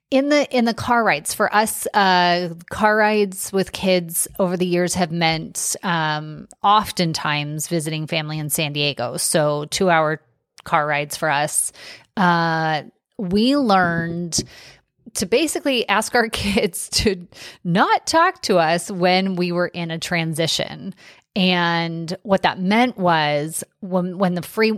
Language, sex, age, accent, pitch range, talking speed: English, female, 30-49, American, 165-200 Hz, 145 wpm